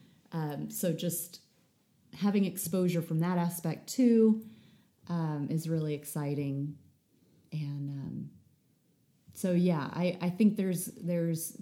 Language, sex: English, female